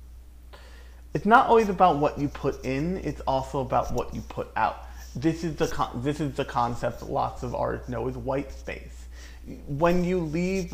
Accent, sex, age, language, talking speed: American, male, 30-49, English, 190 wpm